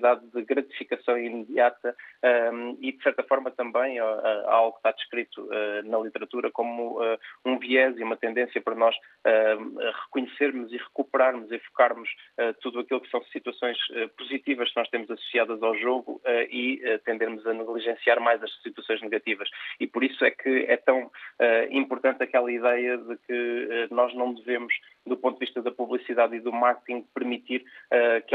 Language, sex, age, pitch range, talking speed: Portuguese, male, 20-39, 115-125 Hz, 155 wpm